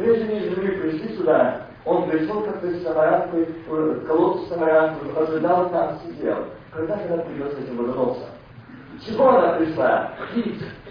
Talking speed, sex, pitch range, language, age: 160 wpm, male, 140-230 Hz, Russian, 50-69